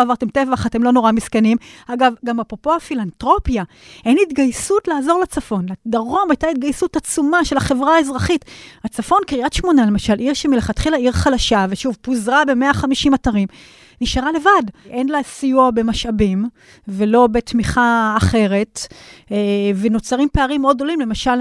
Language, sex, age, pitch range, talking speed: Hebrew, female, 30-49, 225-285 Hz, 130 wpm